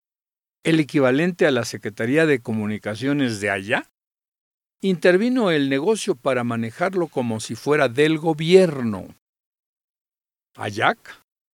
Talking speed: 105 wpm